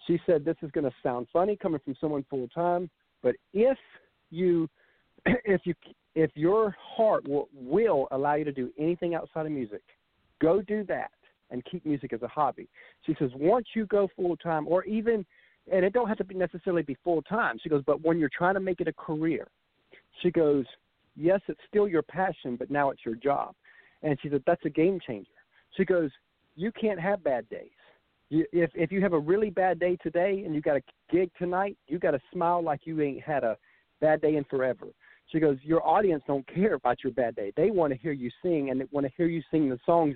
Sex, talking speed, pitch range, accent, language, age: male, 220 wpm, 145-180 Hz, American, English, 50-69